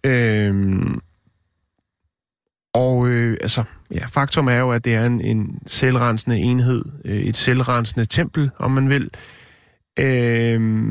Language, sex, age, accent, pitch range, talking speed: Danish, male, 30-49, native, 115-140 Hz, 125 wpm